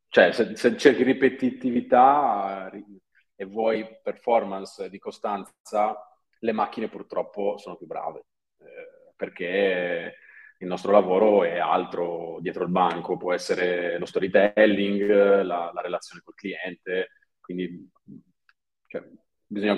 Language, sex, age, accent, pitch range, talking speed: Italian, male, 30-49, native, 90-125 Hz, 110 wpm